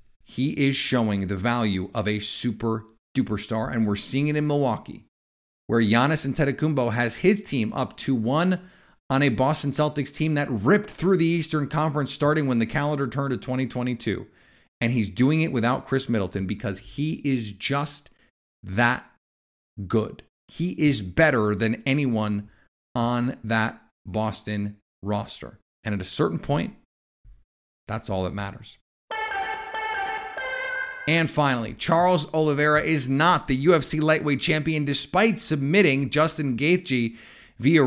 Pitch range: 110-150 Hz